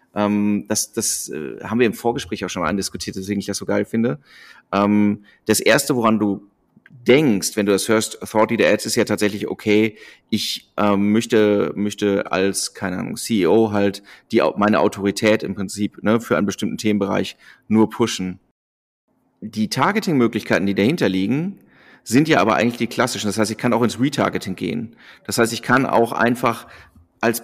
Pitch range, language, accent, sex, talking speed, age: 100-115 Hz, German, German, male, 170 wpm, 30-49